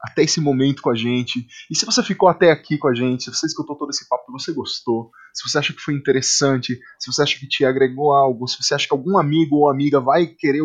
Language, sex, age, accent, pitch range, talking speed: Portuguese, male, 20-39, Brazilian, 125-150 Hz, 265 wpm